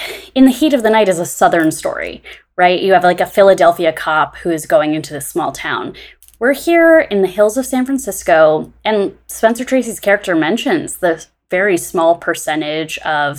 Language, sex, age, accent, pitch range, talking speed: English, female, 20-39, American, 170-255 Hz, 190 wpm